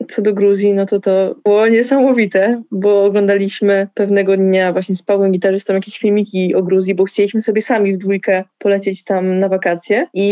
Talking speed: 180 wpm